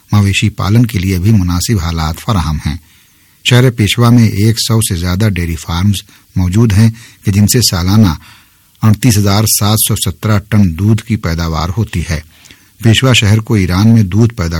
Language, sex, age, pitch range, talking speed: Urdu, male, 50-69, 95-115 Hz, 170 wpm